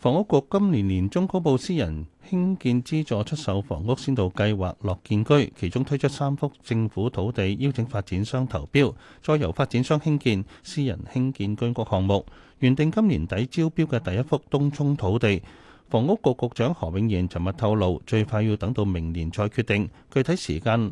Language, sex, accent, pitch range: Chinese, male, native, 95-140 Hz